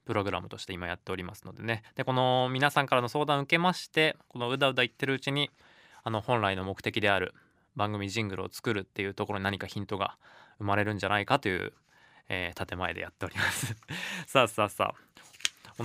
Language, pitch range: Japanese, 105-135 Hz